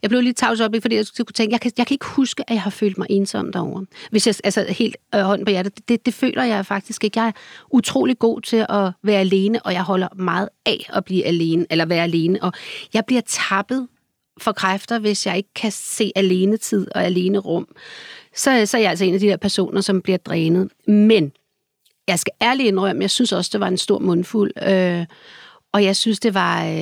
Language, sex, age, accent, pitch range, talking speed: Danish, female, 40-59, native, 175-220 Hz, 230 wpm